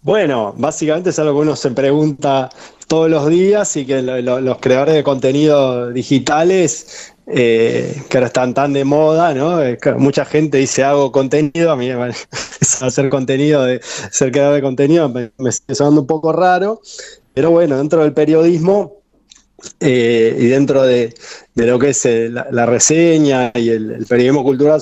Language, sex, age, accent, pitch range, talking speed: Spanish, male, 20-39, Argentinian, 125-150 Hz, 180 wpm